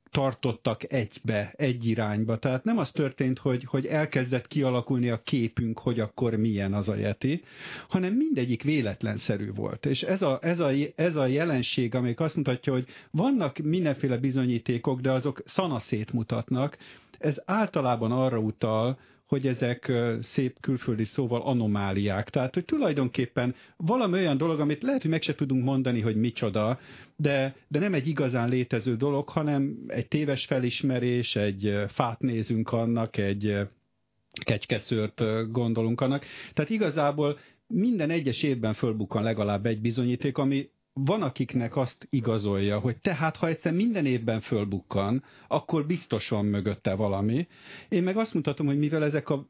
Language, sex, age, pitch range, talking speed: Hungarian, male, 50-69, 115-145 Hz, 145 wpm